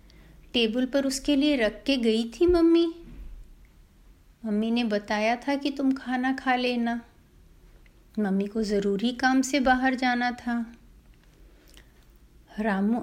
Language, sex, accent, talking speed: Hindi, female, native, 125 wpm